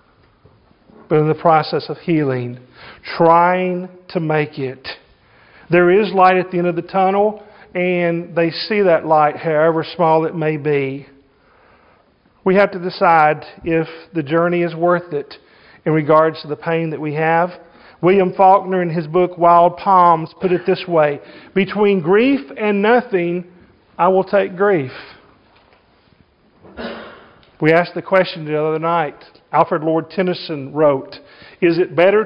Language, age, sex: English, 40-59, male